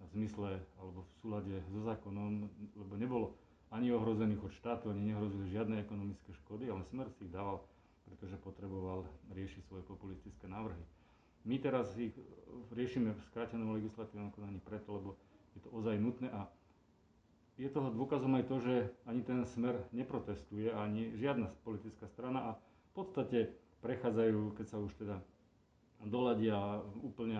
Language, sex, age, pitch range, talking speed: Slovak, male, 40-59, 100-115 Hz, 145 wpm